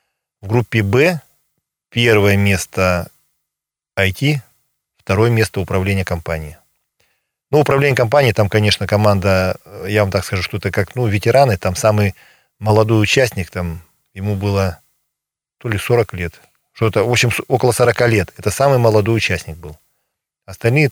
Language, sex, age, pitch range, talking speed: Russian, male, 40-59, 95-120 Hz, 140 wpm